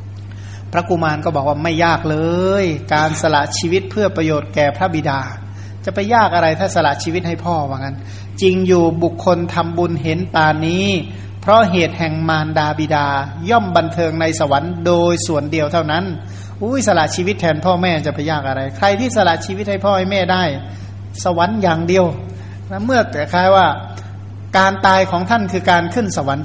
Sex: male